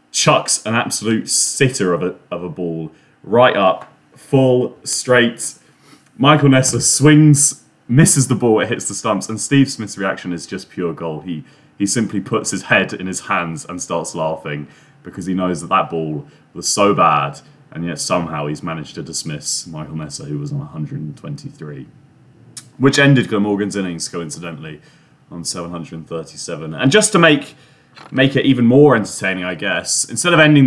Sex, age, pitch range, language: male, 30-49, 80-125 Hz, English